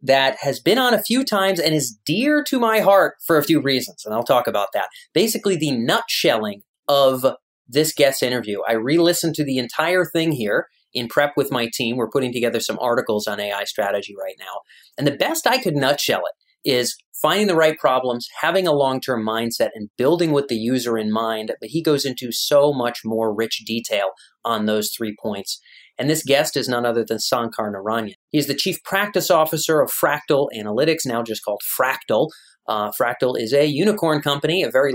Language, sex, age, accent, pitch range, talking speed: English, male, 30-49, American, 115-155 Hz, 200 wpm